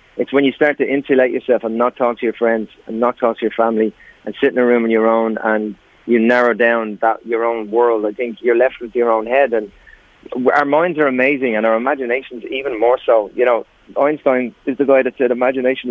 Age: 30-49